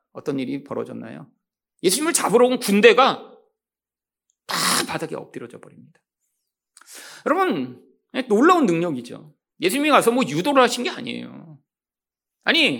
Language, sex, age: Korean, male, 40-59